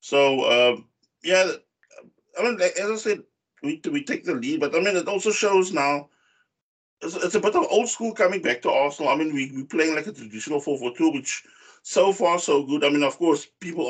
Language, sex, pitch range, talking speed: English, male, 135-190 Hz, 215 wpm